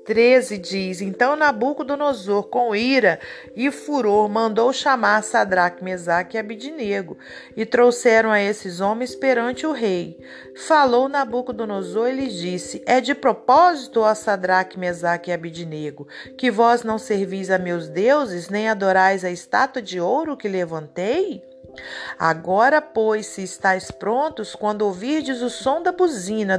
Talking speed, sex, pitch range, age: 140 wpm, female, 185-255 Hz, 40-59